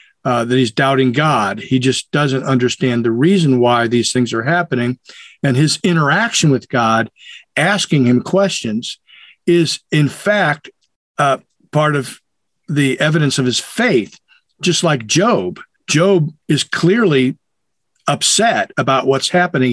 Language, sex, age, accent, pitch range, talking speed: English, male, 50-69, American, 120-160 Hz, 140 wpm